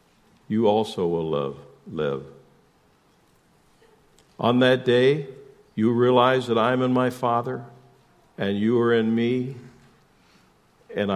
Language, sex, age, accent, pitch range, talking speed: English, male, 60-79, American, 110-130 Hz, 115 wpm